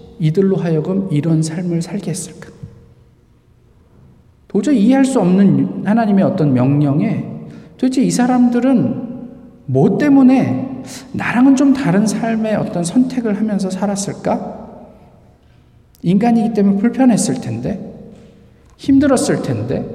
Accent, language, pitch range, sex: native, Korean, 145-230 Hz, male